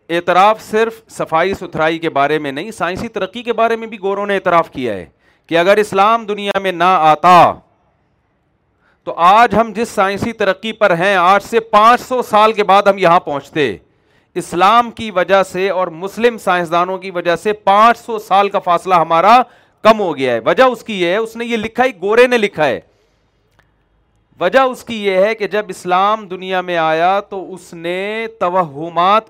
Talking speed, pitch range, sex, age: 190 wpm, 175-220 Hz, male, 40-59